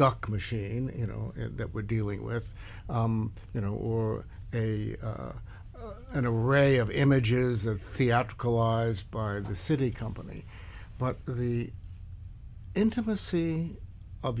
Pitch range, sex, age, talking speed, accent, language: 100-125 Hz, male, 60-79, 115 wpm, American, English